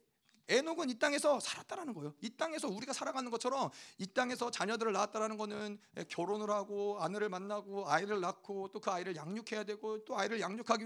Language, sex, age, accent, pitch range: Korean, male, 40-59, native, 210-275 Hz